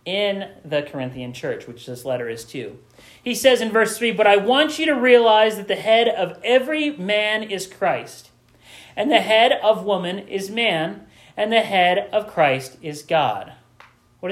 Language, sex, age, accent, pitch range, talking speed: English, male, 40-59, American, 120-195 Hz, 180 wpm